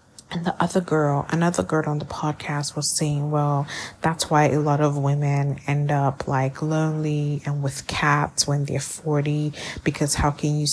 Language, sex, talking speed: English, female, 180 wpm